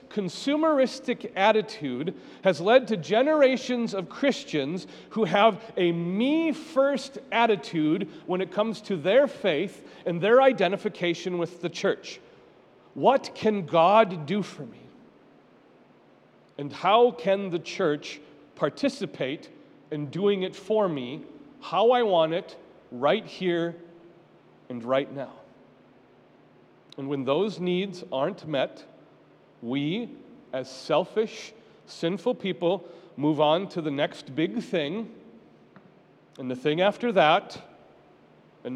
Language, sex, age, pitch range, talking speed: English, male, 40-59, 155-220 Hz, 115 wpm